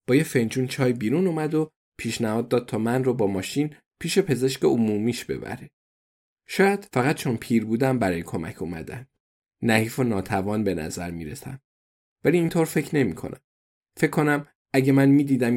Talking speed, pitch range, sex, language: 160 wpm, 105-135 Hz, male, Persian